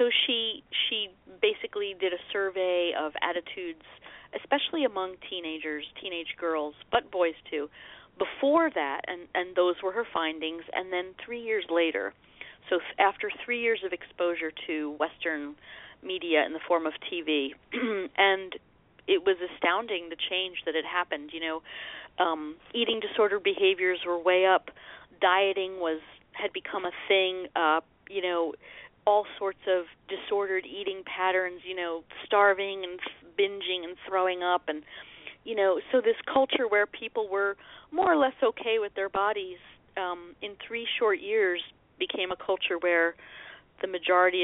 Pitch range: 170-210 Hz